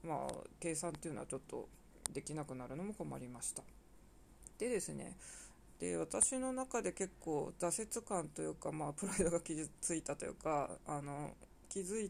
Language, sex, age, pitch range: Japanese, female, 20-39, 150-195 Hz